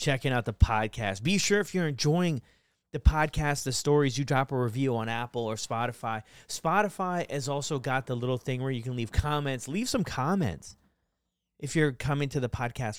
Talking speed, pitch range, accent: 195 wpm, 115-155 Hz, American